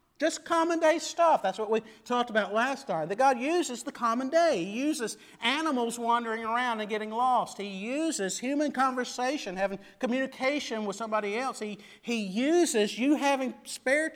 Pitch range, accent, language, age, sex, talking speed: 220-310 Hz, American, English, 50-69, male, 170 wpm